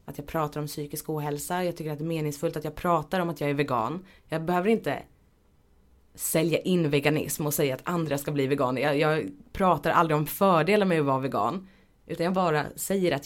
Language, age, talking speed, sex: Swedish, 30-49, 215 wpm, female